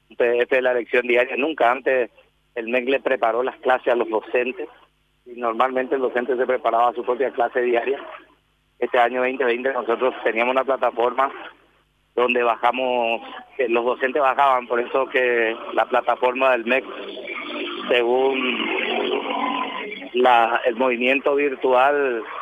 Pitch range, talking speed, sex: 125-150 Hz, 135 wpm, male